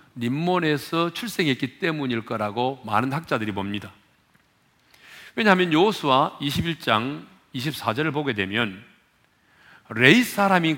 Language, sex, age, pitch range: Korean, male, 40-59, 115-180 Hz